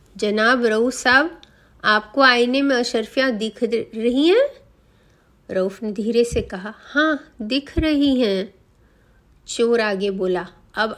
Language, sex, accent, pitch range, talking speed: Hindi, female, native, 205-270 Hz, 125 wpm